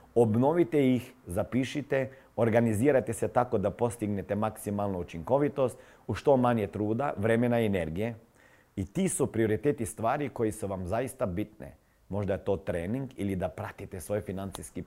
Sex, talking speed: male, 145 wpm